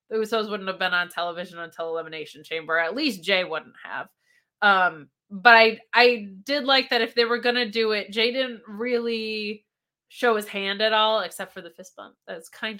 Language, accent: English, American